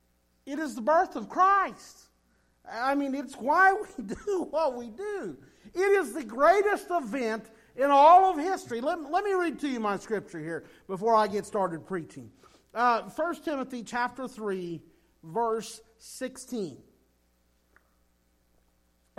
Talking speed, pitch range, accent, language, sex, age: 140 wpm, 200-290 Hz, American, English, male, 50-69